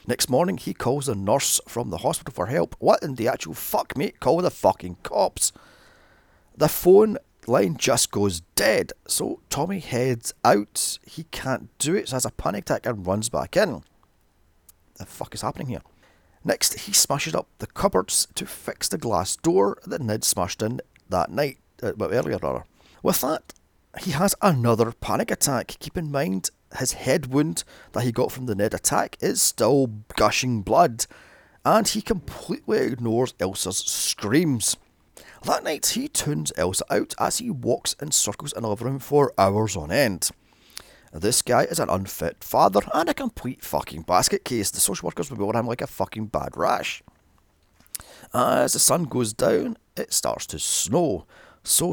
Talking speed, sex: 170 wpm, male